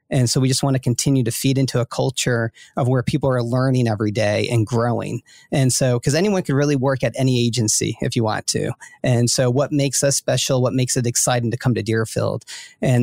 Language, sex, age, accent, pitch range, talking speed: English, male, 40-59, American, 120-135 Hz, 230 wpm